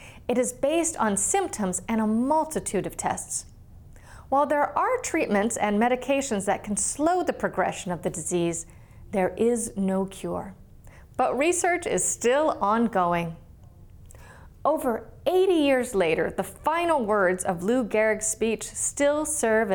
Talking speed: 140 wpm